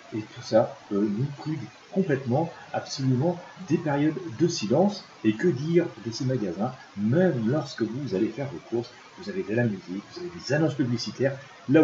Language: French